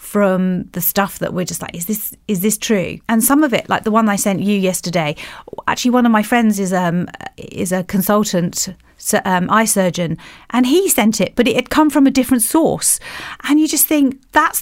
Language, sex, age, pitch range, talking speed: English, female, 30-49, 185-220 Hz, 220 wpm